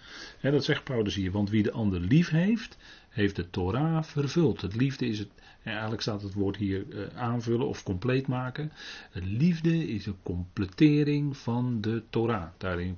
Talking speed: 165 wpm